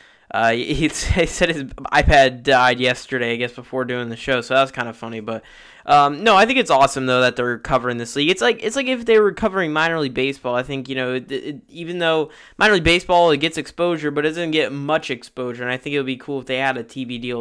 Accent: American